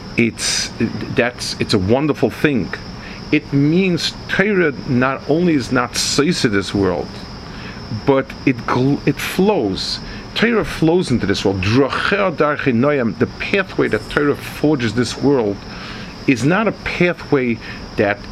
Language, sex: English, male